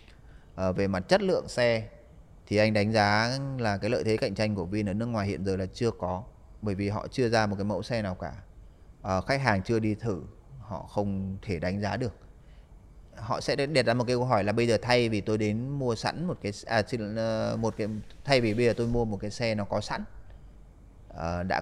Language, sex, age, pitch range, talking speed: Vietnamese, male, 20-39, 95-120 Hz, 240 wpm